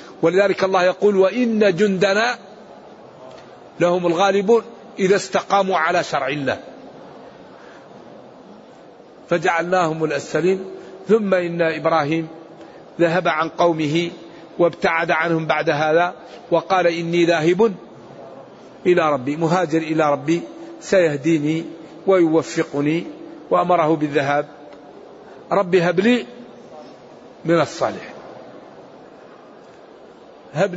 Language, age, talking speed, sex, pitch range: Arabic, 50-69, 80 wpm, male, 160-195 Hz